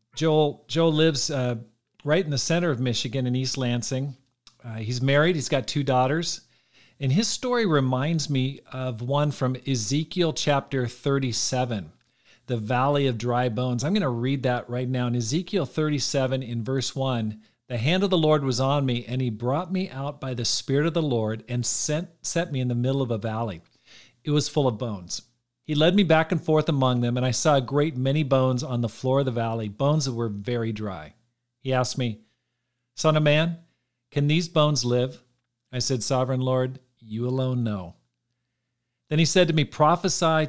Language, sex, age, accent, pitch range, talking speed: English, male, 50-69, American, 120-145 Hz, 195 wpm